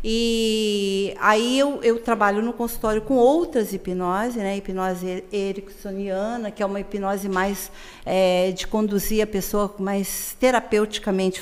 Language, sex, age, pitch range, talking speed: Portuguese, female, 50-69, 195-260 Hz, 120 wpm